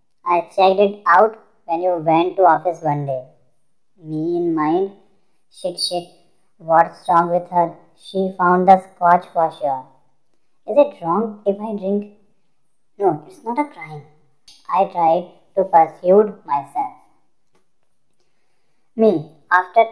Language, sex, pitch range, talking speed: Hindi, male, 165-205 Hz, 135 wpm